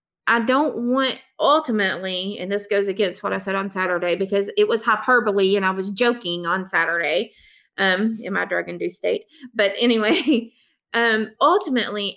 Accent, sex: American, female